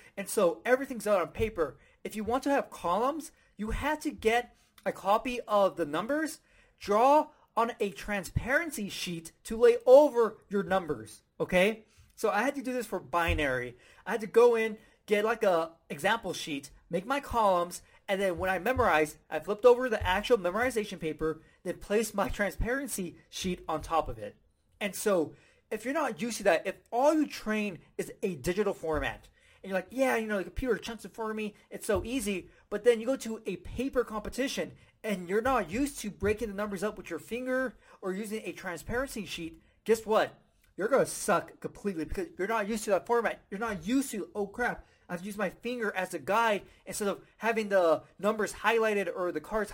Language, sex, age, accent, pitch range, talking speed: English, male, 30-49, American, 180-235 Hz, 200 wpm